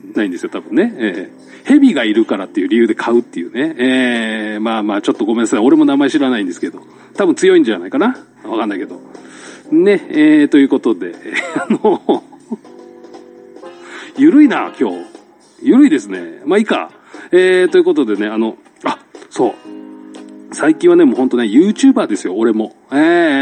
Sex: male